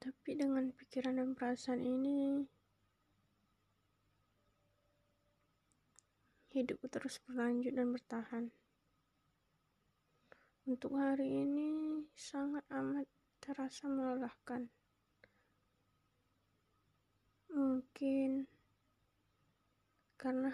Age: 20-39